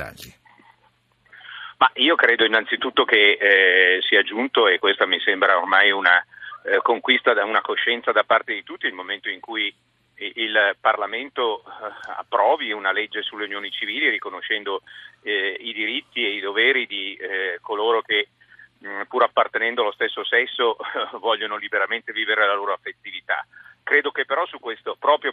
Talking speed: 160 wpm